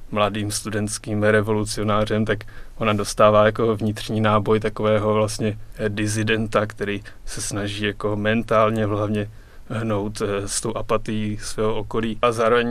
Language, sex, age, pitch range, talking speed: Czech, male, 20-39, 105-115 Hz, 120 wpm